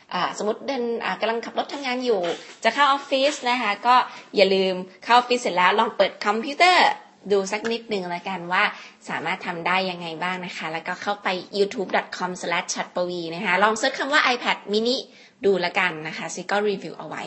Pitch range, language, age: 185-245 Hz, Thai, 20-39